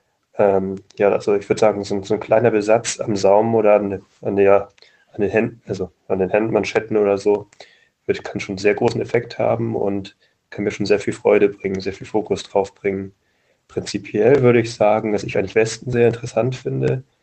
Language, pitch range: German, 100-115 Hz